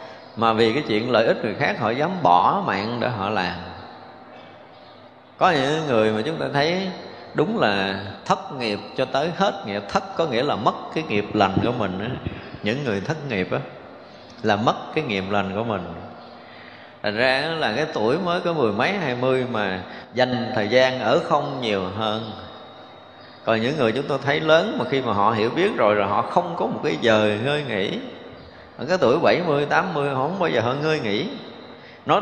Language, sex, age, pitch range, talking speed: Vietnamese, male, 20-39, 105-135 Hz, 195 wpm